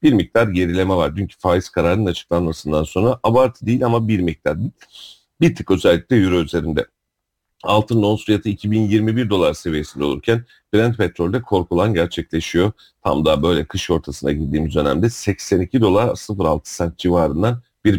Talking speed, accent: 145 wpm, native